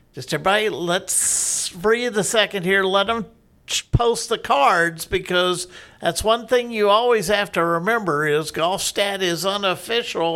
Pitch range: 160-205 Hz